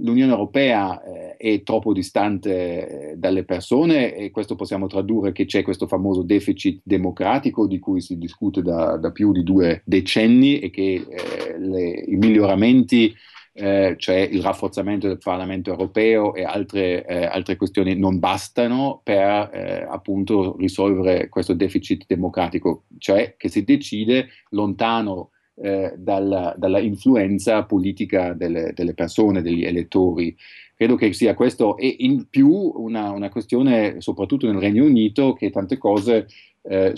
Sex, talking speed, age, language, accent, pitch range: male, 145 wpm, 40-59, Italian, native, 95-110 Hz